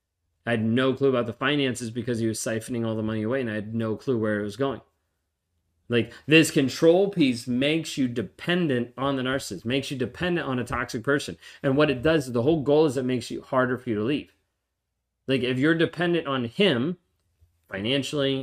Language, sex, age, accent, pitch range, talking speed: English, male, 30-49, American, 100-135 Hz, 210 wpm